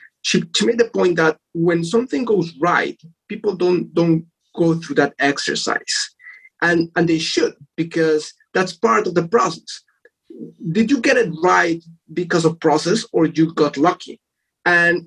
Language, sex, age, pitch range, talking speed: English, male, 30-49, 150-205 Hz, 160 wpm